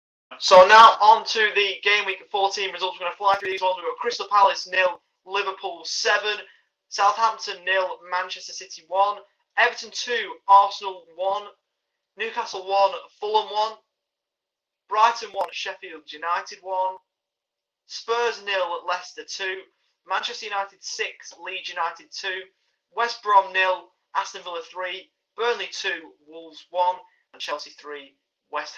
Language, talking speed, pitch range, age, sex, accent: English, 135 wpm, 180-225 Hz, 20-39, male, British